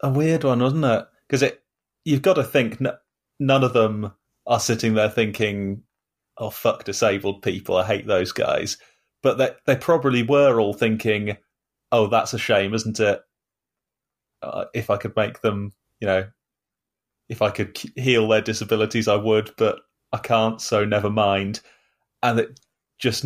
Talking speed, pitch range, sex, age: 165 wpm, 105-125 Hz, male, 30-49